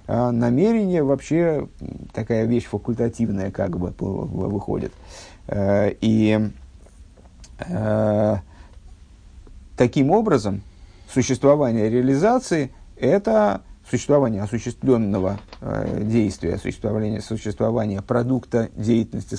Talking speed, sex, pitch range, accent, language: 70 wpm, male, 100-130 Hz, native, Russian